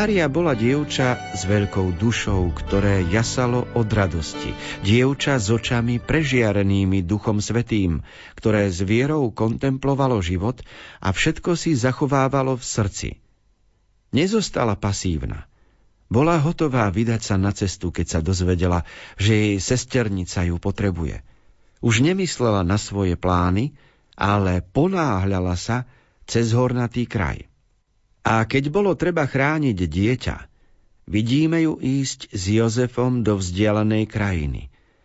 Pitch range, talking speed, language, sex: 95-125 Hz, 115 wpm, Slovak, male